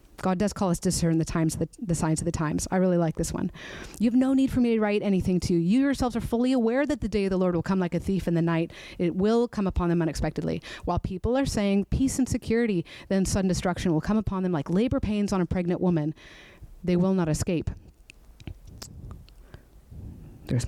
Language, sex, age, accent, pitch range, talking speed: English, female, 30-49, American, 165-235 Hz, 240 wpm